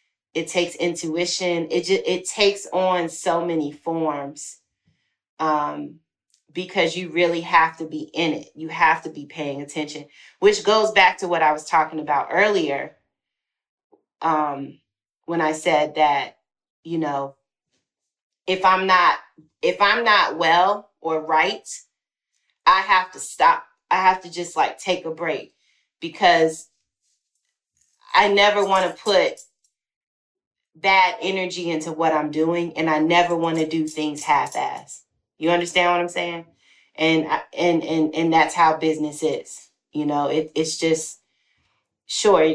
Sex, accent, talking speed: female, American, 145 wpm